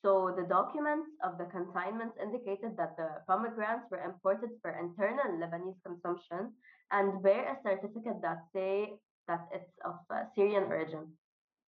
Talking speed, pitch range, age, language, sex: 145 wpm, 180-220 Hz, 20-39, English, female